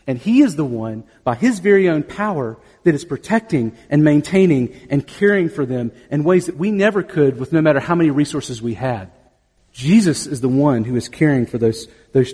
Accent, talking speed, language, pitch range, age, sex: American, 210 wpm, English, 125-185 Hz, 40-59, male